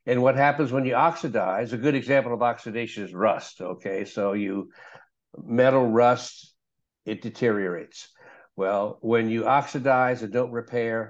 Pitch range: 115-140 Hz